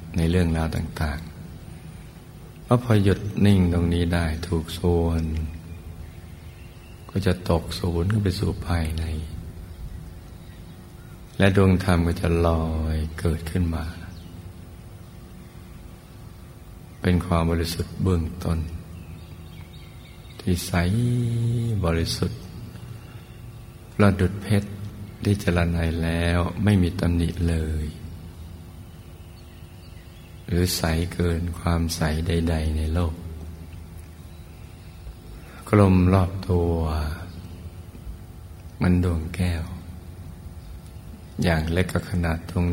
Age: 60-79